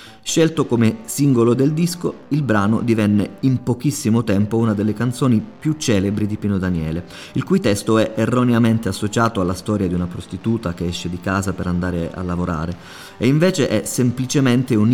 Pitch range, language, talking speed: 95-120 Hz, Italian, 175 wpm